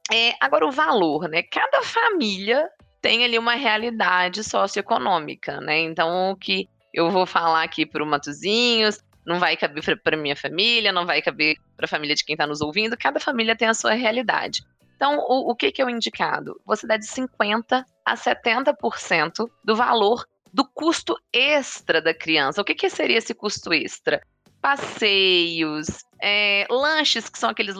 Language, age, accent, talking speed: Portuguese, 20-39, Brazilian, 170 wpm